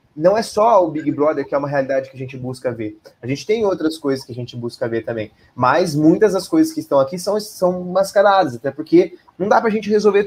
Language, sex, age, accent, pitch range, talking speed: Portuguese, male, 20-39, Brazilian, 125-175 Hz, 250 wpm